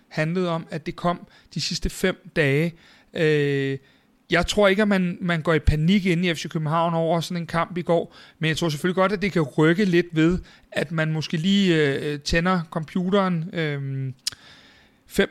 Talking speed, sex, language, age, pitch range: 175 wpm, male, Danish, 40-59, 155-180 Hz